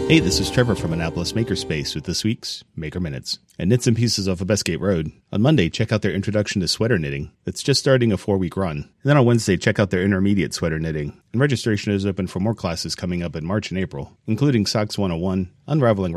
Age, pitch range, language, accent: 30-49, 90-115 Hz, English, American